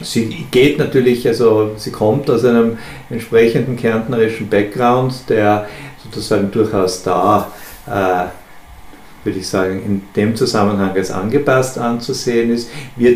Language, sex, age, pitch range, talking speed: German, male, 50-69, 105-140 Hz, 125 wpm